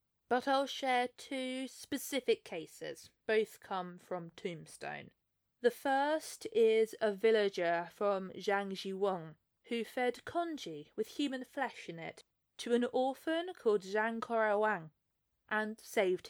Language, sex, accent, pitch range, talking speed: English, female, British, 195-245 Hz, 120 wpm